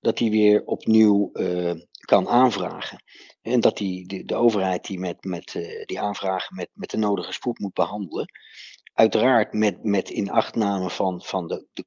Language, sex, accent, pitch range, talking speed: Dutch, male, Dutch, 95-110 Hz, 170 wpm